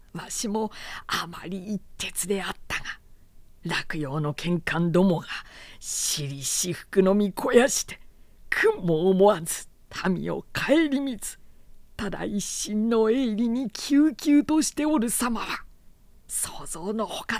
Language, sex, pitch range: Japanese, female, 180-275 Hz